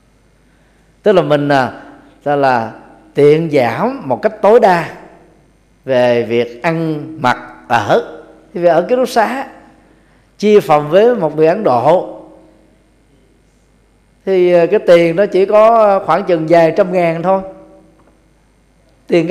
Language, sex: Vietnamese, male